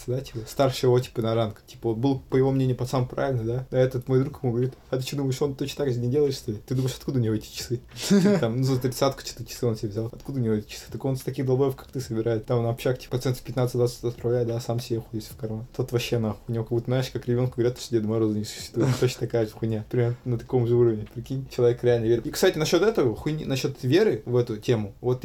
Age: 20-39